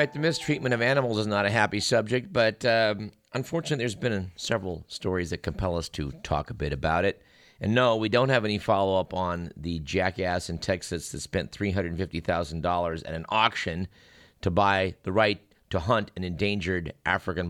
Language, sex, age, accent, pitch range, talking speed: English, male, 50-69, American, 90-110 Hz, 180 wpm